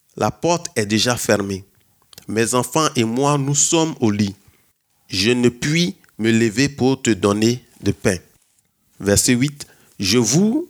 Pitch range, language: 105-130 Hz, French